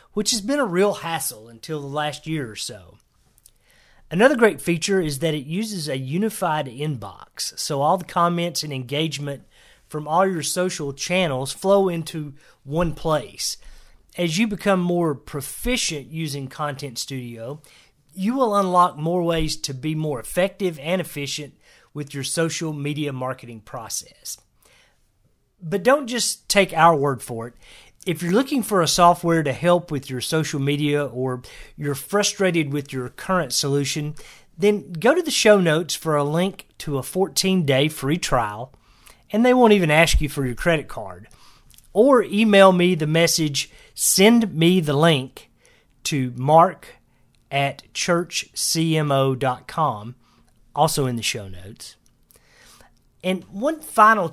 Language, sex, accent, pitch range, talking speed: English, male, American, 140-185 Hz, 150 wpm